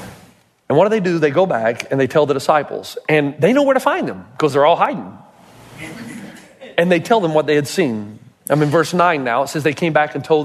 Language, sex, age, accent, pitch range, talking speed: English, male, 40-59, American, 145-205 Hz, 255 wpm